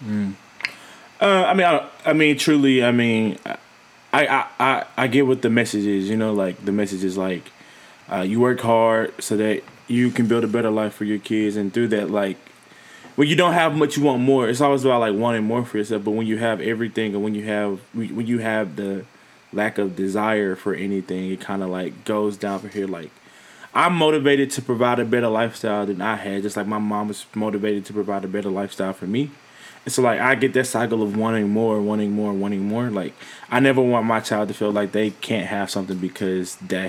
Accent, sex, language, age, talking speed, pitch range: American, male, English, 20-39, 225 wpm, 105-125 Hz